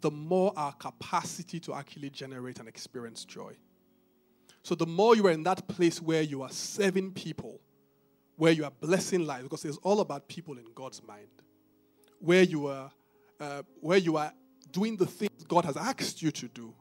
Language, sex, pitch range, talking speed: English, male, 135-185 Hz, 185 wpm